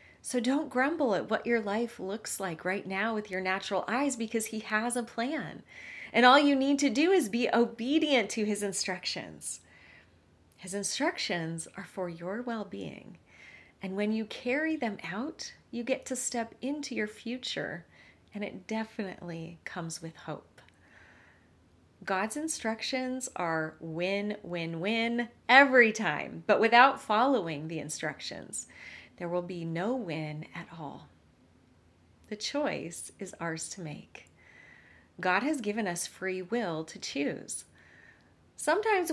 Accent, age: American, 30-49